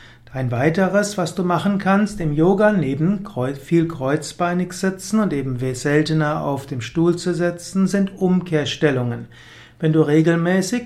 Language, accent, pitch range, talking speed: German, German, 145-180 Hz, 140 wpm